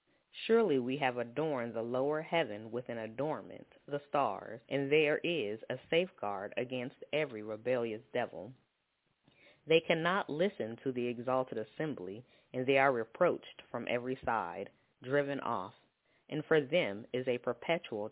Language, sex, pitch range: English, female, 120-150 Hz